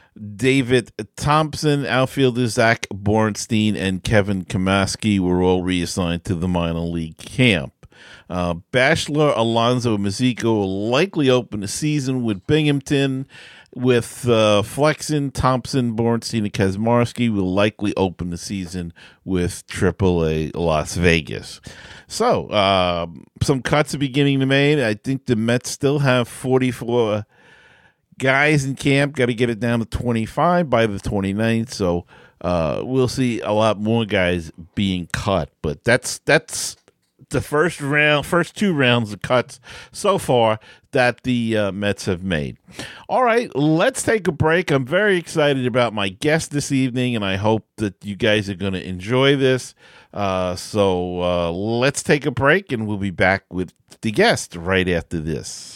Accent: American